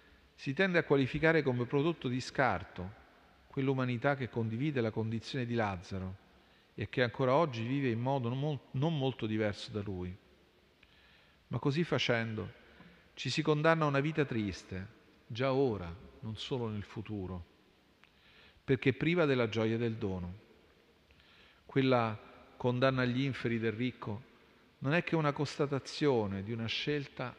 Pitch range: 105-135 Hz